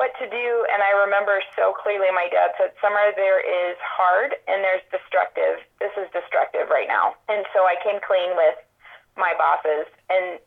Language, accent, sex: English, American, female